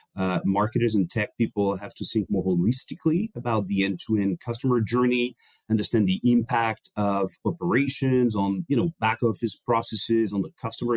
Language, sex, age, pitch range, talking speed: English, male, 30-49, 100-125 Hz, 160 wpm